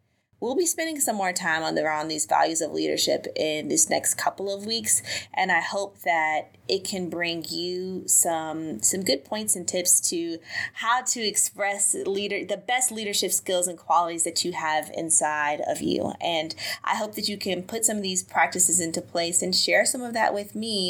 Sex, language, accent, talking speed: female, English, American, 200 wpm